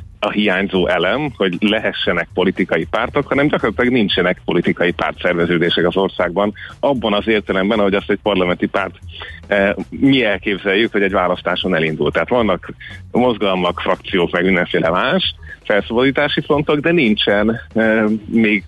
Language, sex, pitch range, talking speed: Hungarian, male, 95-110 Hz, 140 wpm